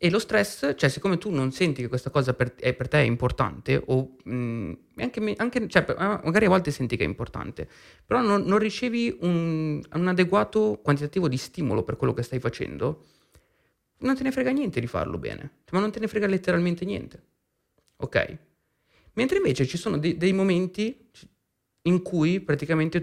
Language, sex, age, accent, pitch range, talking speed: Italian, male, 30-49, native, 120-175 Hz, 175 wpm